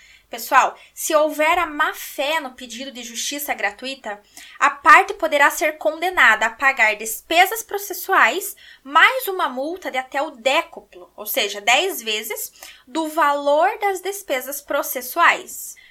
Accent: Brazilian